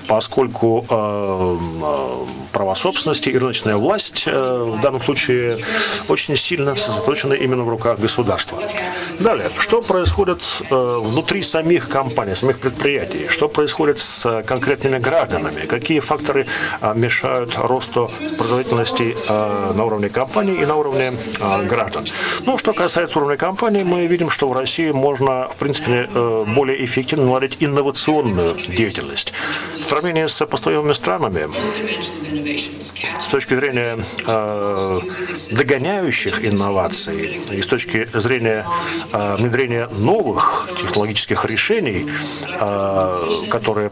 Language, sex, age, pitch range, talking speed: Russian, male, 40-59, 115-150 Hz, 115 wpm